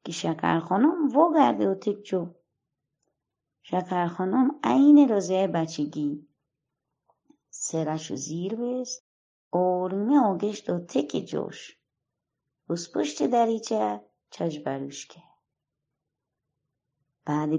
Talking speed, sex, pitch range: 80 wpm, female, 145-215 Hz